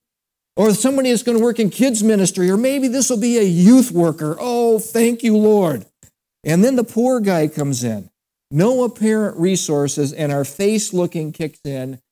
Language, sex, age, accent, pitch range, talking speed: English, male, 60-79, American, 140-190 Hz, 185 wpm